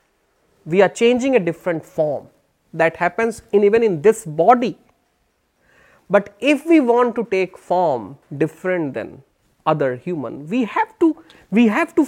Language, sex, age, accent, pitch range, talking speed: Hindi, male, 30-49, native, 190-280 Hz, 150 wpm